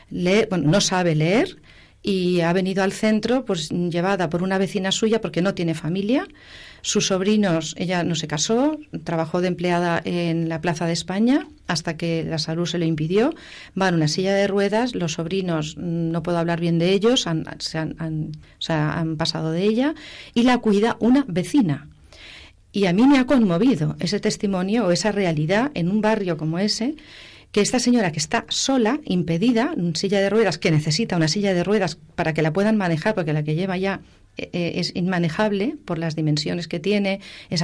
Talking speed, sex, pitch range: 190 wpm, female, 170-220 Hz